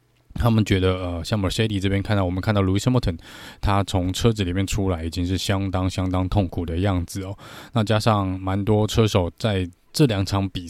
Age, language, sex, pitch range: 20-39, Chinese, male, 95-120 Hz